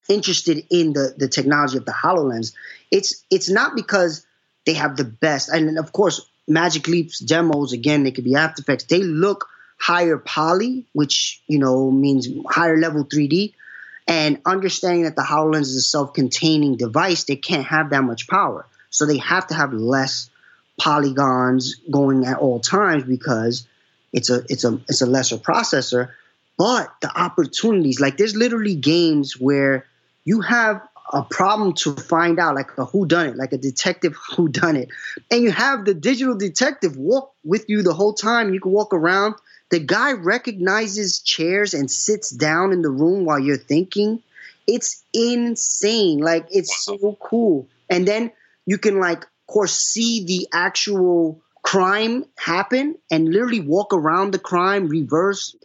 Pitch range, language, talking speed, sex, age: 140-200 Hz, English, 165 wpm, male, 20-39